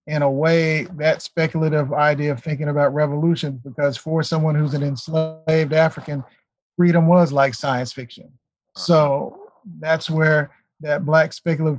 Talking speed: 145 wpm